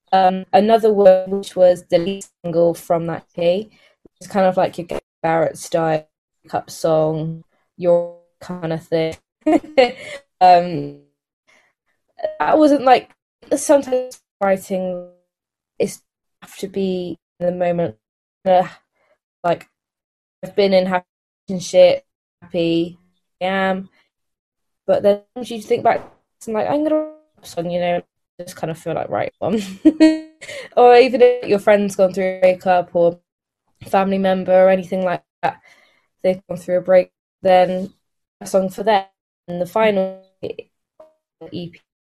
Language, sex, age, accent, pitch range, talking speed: English, female, 20-39, British, 170-205 Hz, 140 wpm